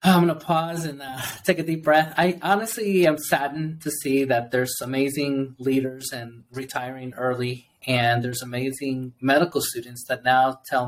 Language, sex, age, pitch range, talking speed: English, male, 30-49, 125-150 Hz, 165 wpm